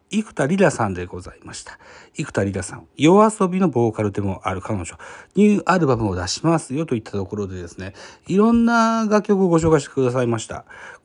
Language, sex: Japanese, male